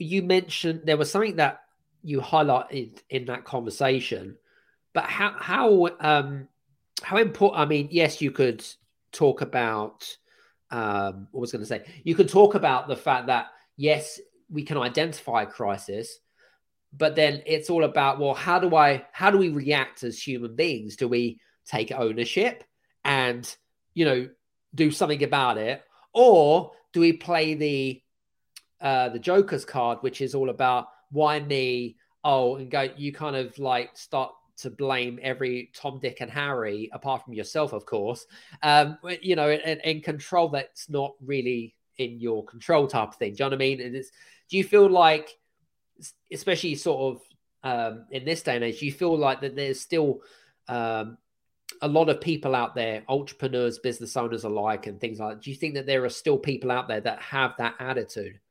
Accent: British